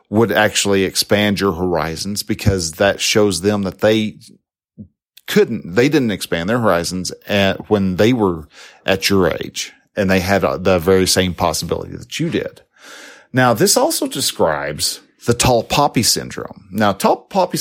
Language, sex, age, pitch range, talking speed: English, male, 40-59, 95-120 Hz, 150 wpm